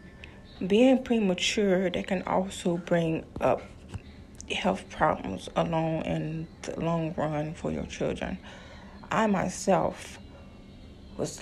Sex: female